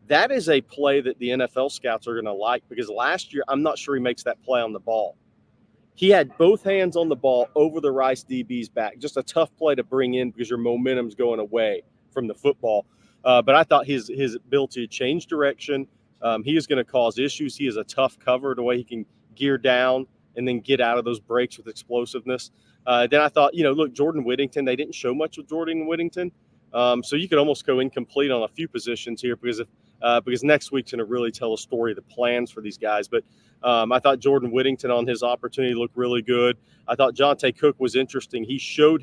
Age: 30-49